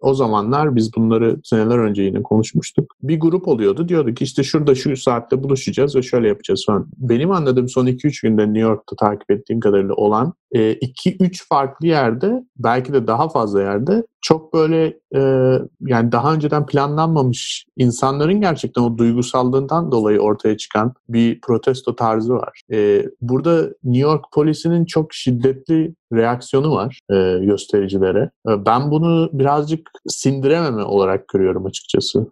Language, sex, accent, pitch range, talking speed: Turkish, male, native, 110-140 Hz, 140 wpm